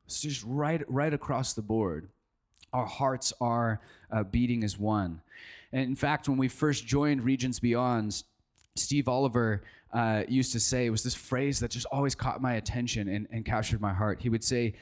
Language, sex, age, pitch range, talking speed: English, male, 20-39, 110-135 Hz, 190 wpm